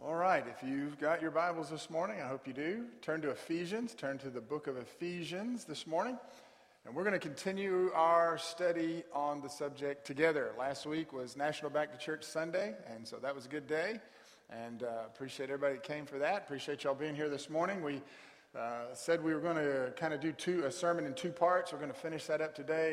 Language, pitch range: English, 140-170 Hz